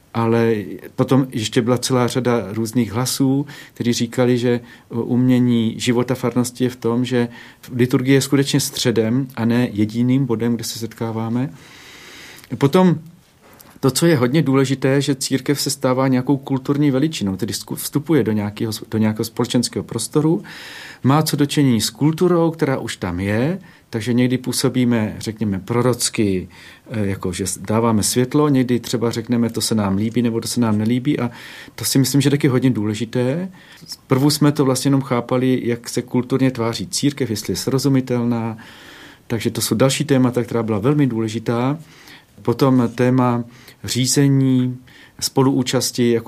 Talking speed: 150 wpm